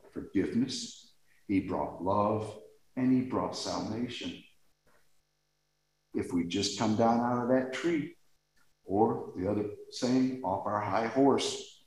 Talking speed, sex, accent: 125 wpm, male, American